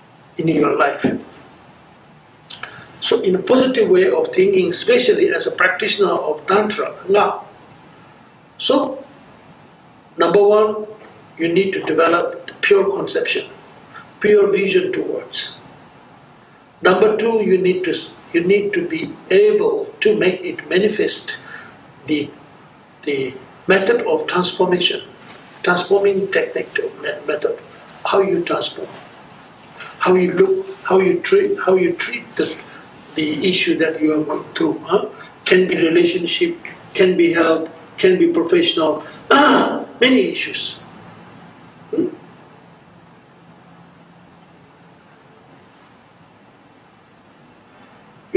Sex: male